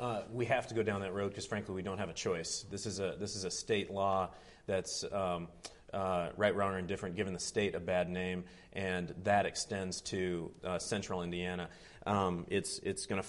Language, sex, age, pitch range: English, male, 30-49, 90-100 Hz